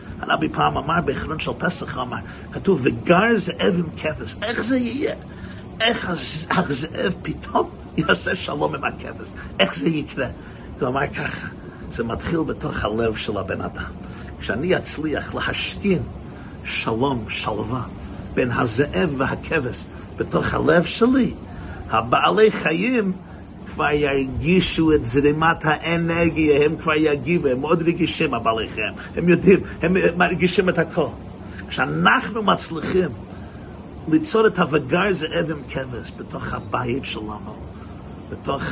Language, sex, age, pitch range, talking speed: Hebrew, male, 50-69, 120-185 Hz, 125 wpm